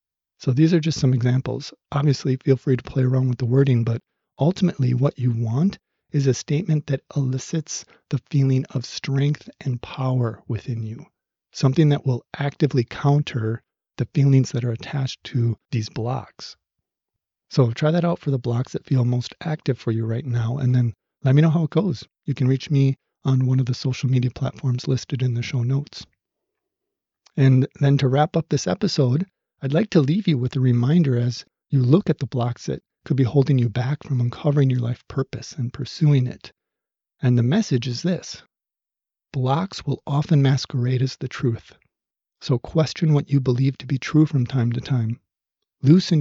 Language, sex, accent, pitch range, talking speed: English, male, American, 125-150 Hz, 190 wpm